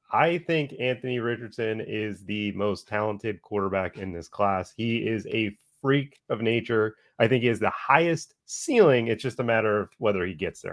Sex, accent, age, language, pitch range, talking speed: male, American, 30-49, English, 110-145 Hz, 190 wpm